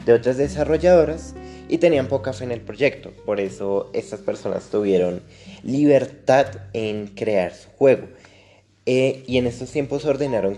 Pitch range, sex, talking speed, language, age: 100-125 Hz, male, 145 wpm, Spanish, 20-39